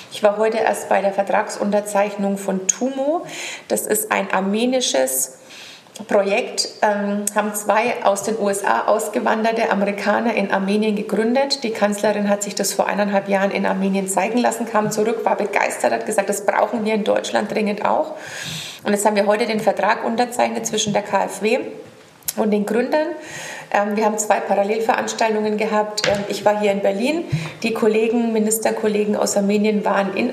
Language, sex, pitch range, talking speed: German, female, 205-235 Hz, 160 wpm